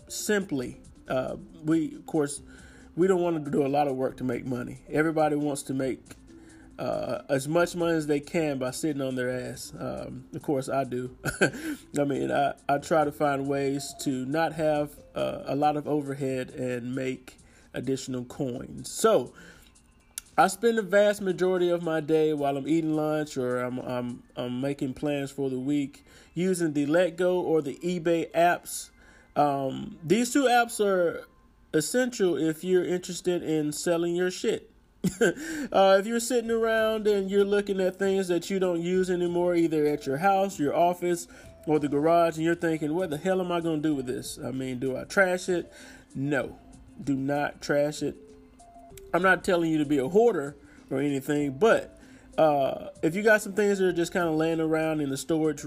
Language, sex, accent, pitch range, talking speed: English, male, American, 140-180 Hz, 190 wpm